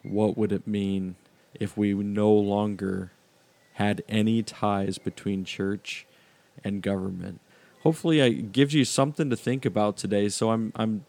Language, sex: English, male